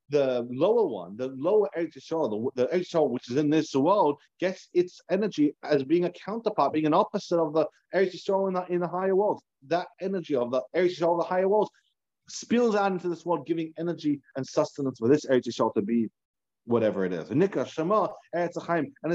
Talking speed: 200 wpm